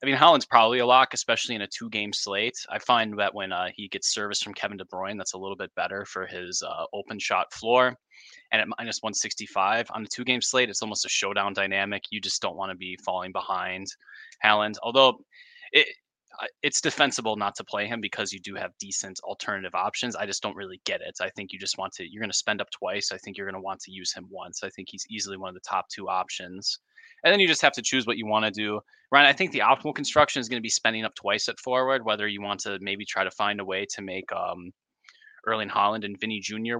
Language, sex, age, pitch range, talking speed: English, male, 20-39, 100-125 Hz, 255 wpm